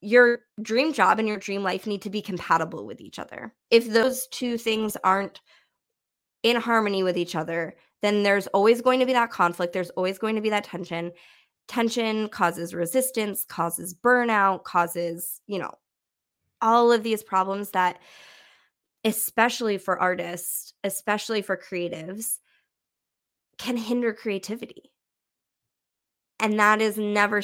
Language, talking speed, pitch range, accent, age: English, 140 wpm, 180-220 Hz, American, 20-39